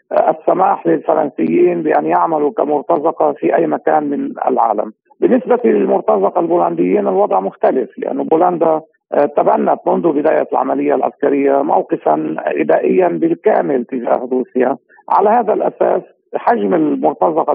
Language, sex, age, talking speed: Arabic, male, 50-69, 110 wpm